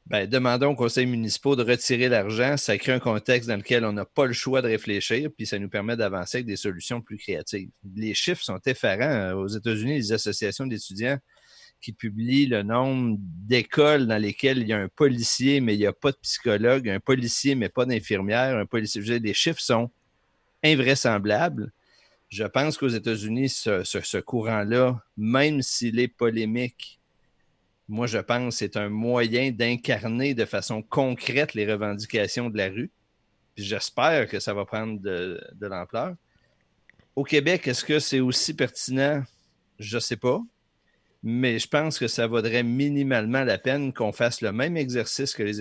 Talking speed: 180 wpm